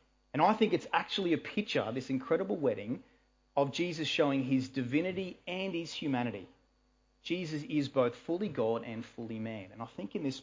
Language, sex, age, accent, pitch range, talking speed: English, male, 30-49, Australian, 125-165 Hz, 180 wpm